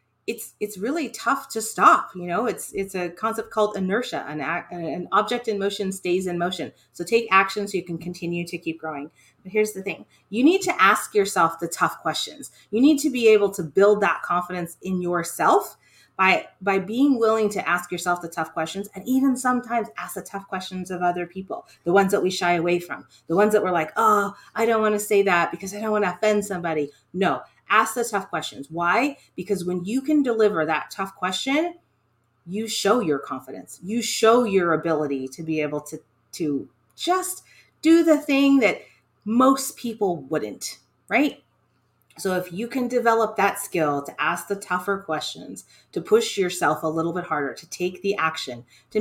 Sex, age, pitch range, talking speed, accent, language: female, 30-49, 170-225 Hz, 200 wpm, American, English